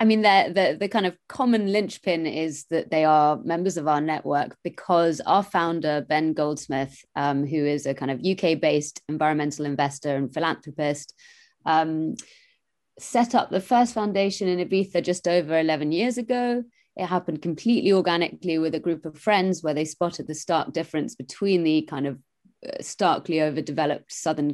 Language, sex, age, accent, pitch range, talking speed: English, female, 30-49, British, 150-185 Hz, 165 wpm